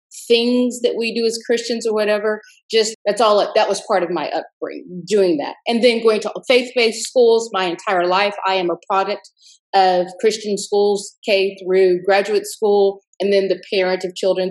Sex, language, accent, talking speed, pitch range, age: female, English, American, 185 wpm, 180-220 Hz, 40-59